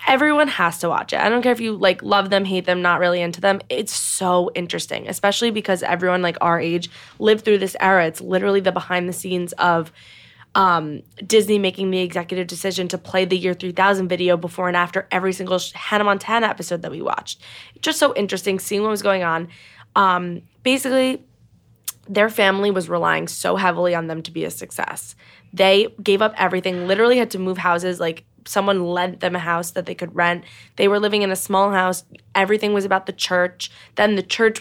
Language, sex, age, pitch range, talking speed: English, female, 20-39, 175-200 Hz, 205 wpm